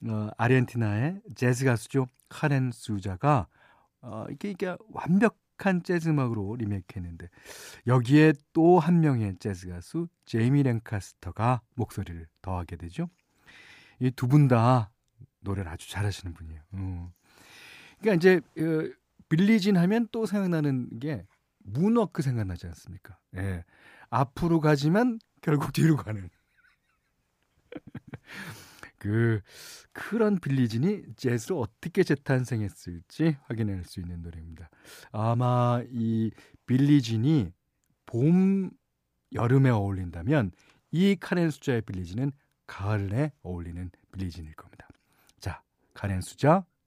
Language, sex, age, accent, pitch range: Korean, male, 40-59, native, 100-155 Hz